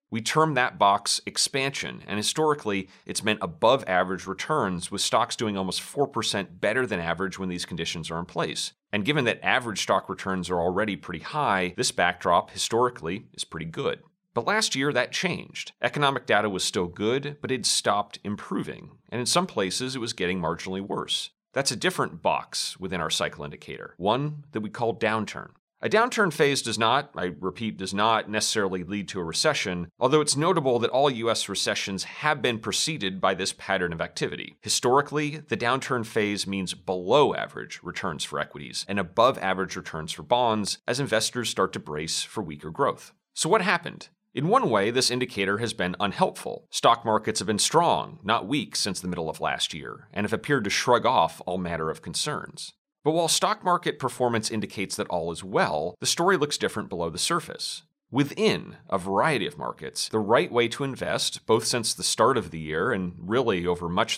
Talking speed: 190 wpm